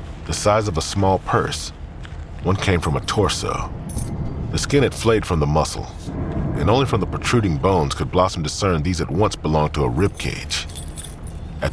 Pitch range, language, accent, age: 80-95 Hz, English, American, 40-59